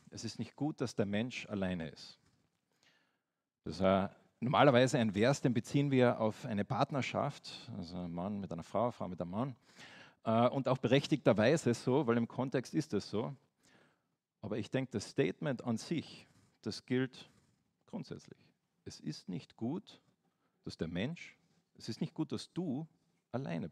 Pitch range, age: 115-150 Hz, 40-59